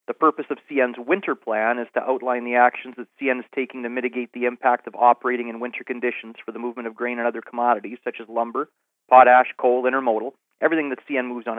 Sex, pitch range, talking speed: male, 120-135 Hz, 225 wpm